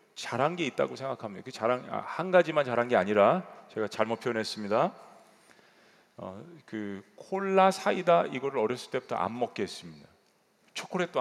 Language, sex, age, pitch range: Korean, male, 40-59, 130-190 Hz